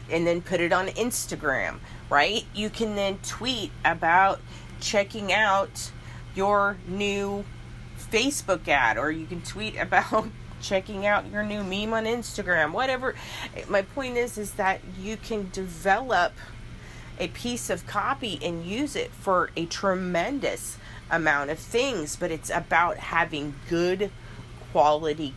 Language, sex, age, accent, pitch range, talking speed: English, female, 30-49, American, 145-215 Hz, 135 wpm